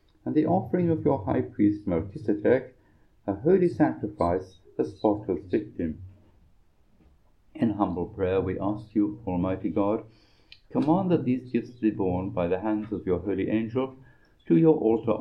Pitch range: 90-125 Hz